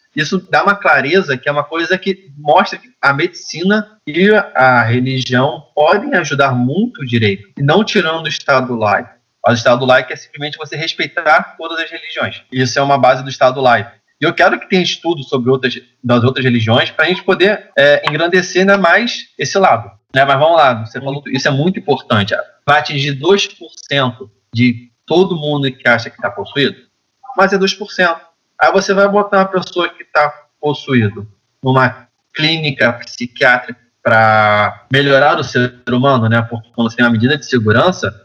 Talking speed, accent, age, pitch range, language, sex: 180 wpm, Brazilian, 20-39, 130-190 Hz, English, male